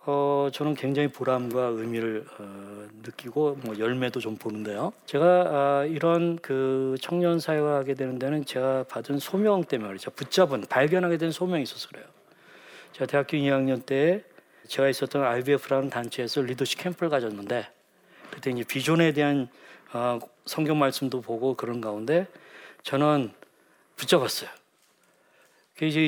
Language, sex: Korean, male